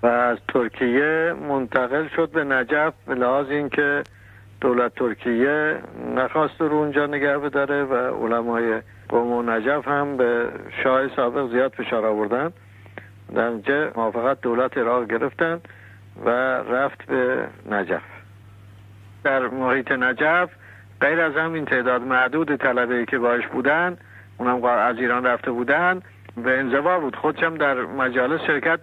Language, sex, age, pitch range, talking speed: Persian, male, 60-79, 115-150 Hz, 135 wpm